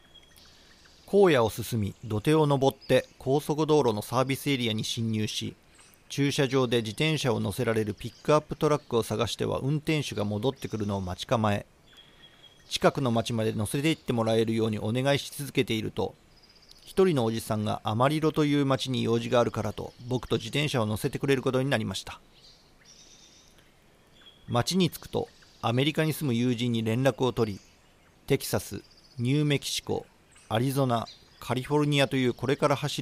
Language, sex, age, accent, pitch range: Japanese, male, 40-59, native, 110-145 Hz